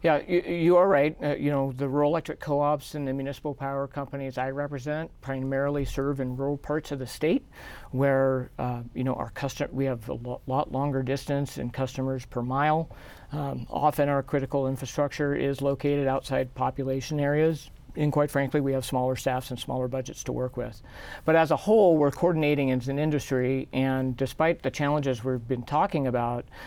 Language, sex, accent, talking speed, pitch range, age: English, male, American, 190 wpm, 130-145 Hz, 50-69